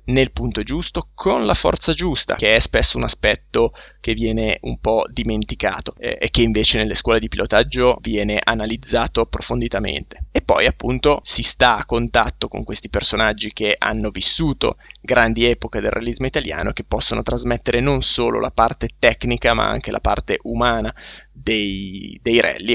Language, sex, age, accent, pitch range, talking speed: Italian, male, 20-39, native, 110-135 Hz, 165 wpm